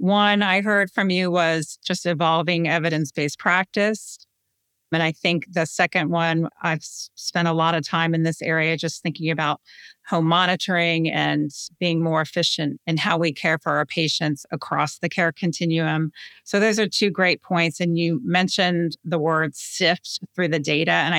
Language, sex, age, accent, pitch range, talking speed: English, female, 30-49, American, 155-180 Hz, 175 wpm